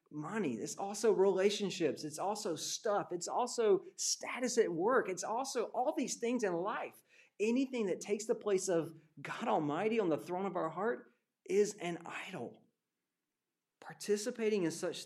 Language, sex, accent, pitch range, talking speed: English, male, American, 140-195 Hz, 155 wpm